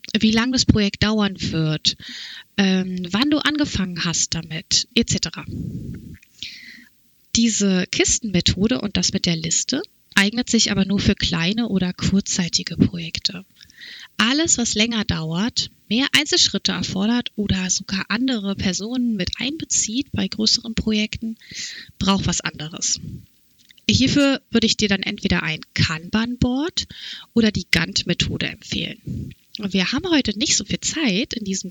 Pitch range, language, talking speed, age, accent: 180-230 Hz, German, 130 wpm, 30-49, German